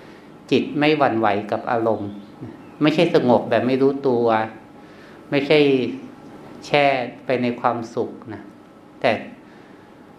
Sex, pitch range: male, 110-140 Hz